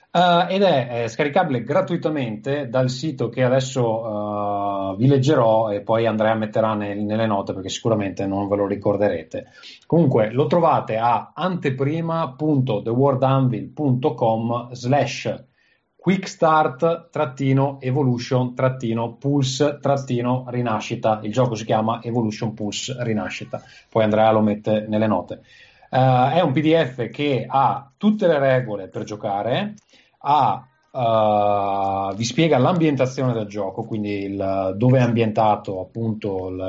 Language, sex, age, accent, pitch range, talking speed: Italian, male, 30-49, native, 110-135 Hz, 110 wpm